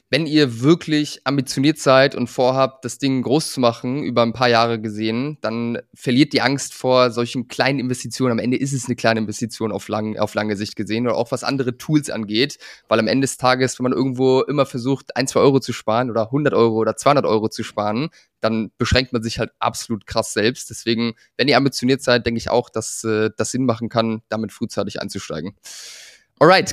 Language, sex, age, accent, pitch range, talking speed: German, male, 20-39, German, 120-150 Hz, 205 wpm